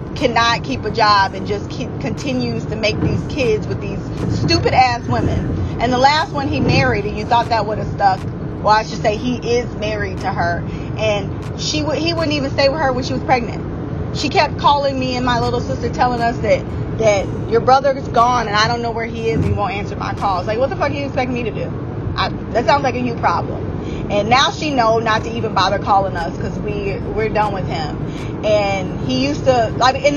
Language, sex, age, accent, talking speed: English, female, 20-39, American, 240 wpm